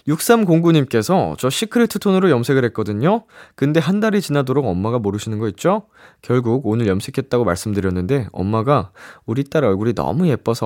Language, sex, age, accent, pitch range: Korean, male, 20-39, native, 95-155 Hz